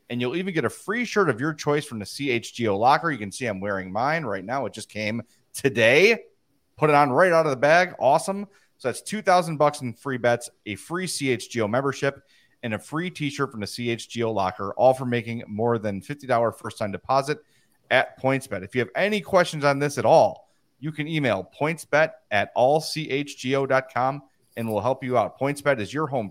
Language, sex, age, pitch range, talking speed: English, male, 30-49, 120-155 Hz, 200 wpm